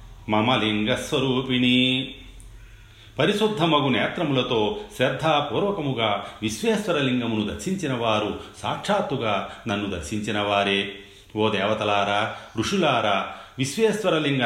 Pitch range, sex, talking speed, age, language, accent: 105-135 Hz, male, 60 wpm, 40-59, Telugu, native